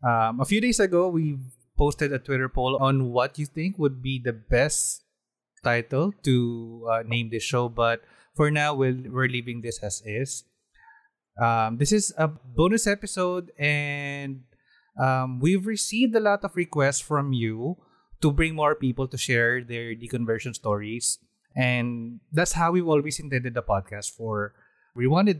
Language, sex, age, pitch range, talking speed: Filipino, male, 20-39, 115-145 Hz, 160 wpm